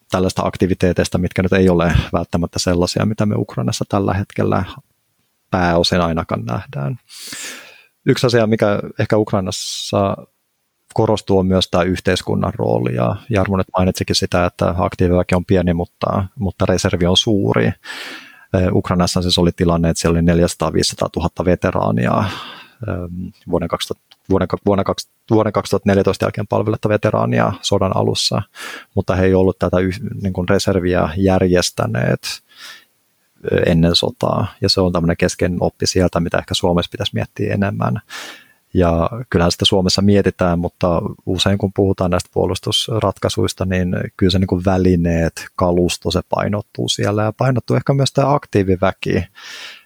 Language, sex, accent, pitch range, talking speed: Finnish, male, native, 90-100 Hz, 130 wpm